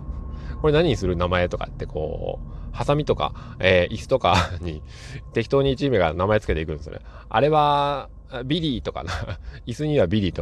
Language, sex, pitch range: Japanese, male, 80-130 Hz